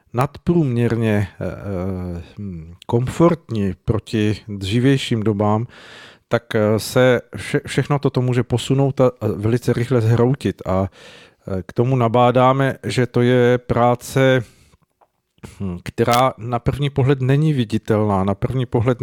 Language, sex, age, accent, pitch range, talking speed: Czech, male, 50-69, native, 110-125 Hz, 100 wpm